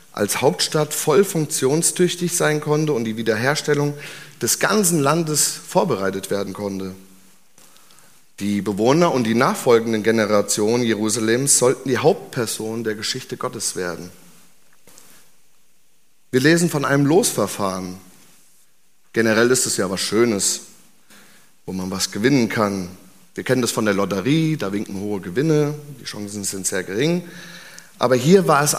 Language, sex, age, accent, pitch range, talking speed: German, male, 30-49, German, 110-150 Hz, 135 wpm